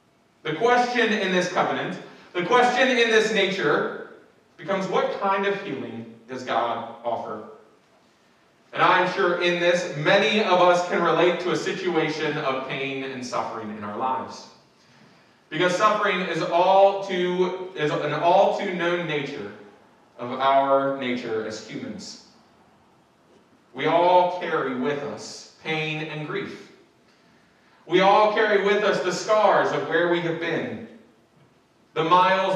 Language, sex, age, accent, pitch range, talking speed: English, male, 30-49, American, 130-190 Hz, 135 wpm